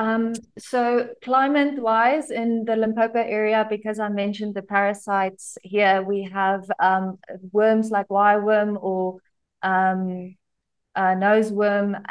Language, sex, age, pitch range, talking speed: English, female, 20-39, 195-220 Hz, 110 wpm